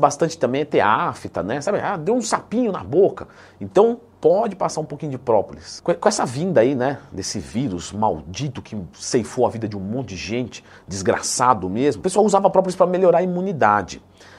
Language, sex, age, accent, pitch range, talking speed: Portuguese, male, 50-69, Brazilian, 130-205 Hz, 195 wpm